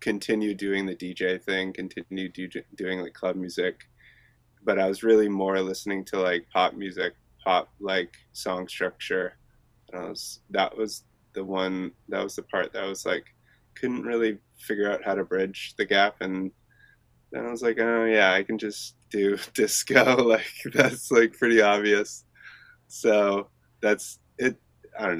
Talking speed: 170 wpm